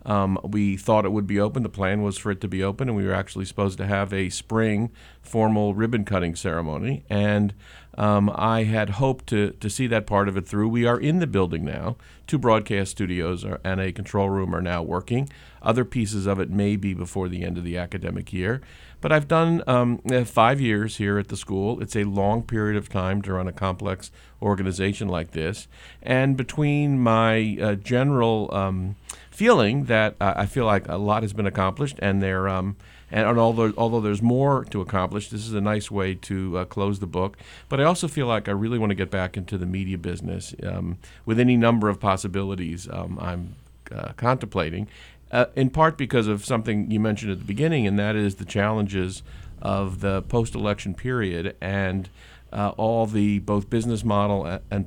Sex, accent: male, American